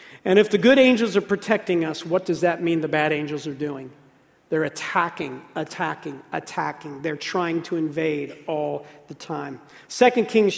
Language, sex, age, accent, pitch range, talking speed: English, male, 50-69, American, 175-210 Hz, 170 wpm